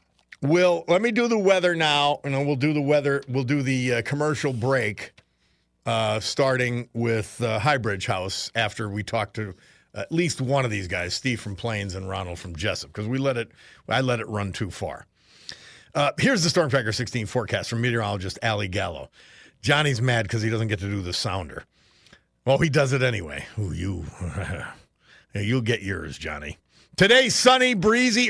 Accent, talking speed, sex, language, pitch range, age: American, 185 wpm, male, English, 110-175 Hz, 50-69